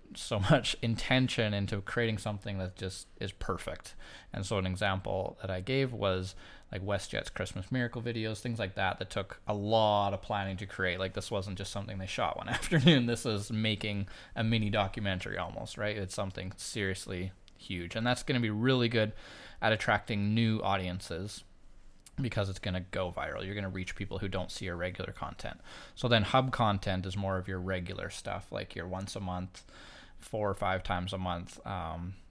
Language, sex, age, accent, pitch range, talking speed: English, male, 20-39, American, 95-115 Hz, 195 wpm